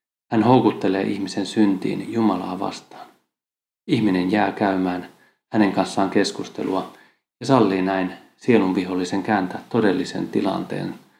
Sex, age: male, 30-49